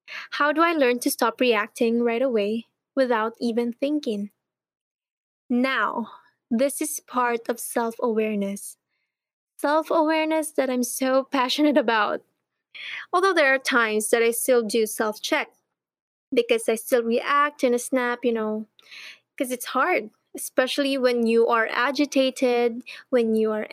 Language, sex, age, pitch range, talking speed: English, female, 20-39, 230-270 Hz, 135 wpm